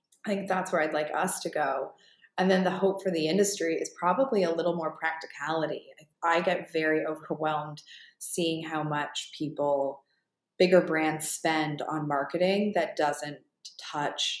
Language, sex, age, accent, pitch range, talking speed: English, female, 20-39, American, 150-175 Hz, 160 wpm